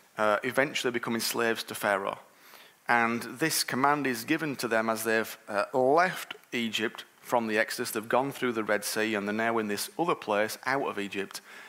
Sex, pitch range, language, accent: male, 120-150 Hz, English, British